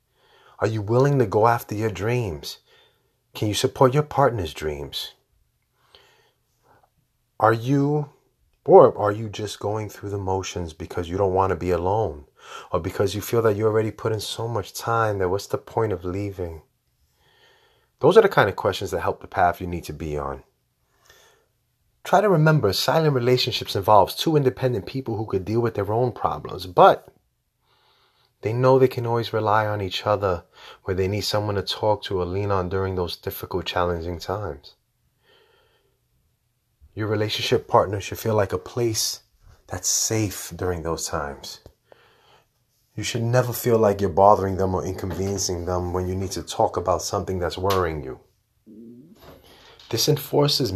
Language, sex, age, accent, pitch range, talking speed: English, male, 30-49, American, 95-120 Hz, 165 wpm